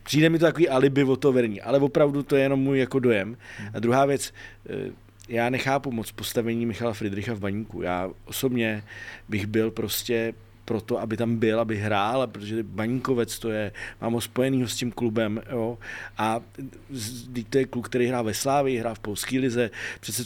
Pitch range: 110-130 Hz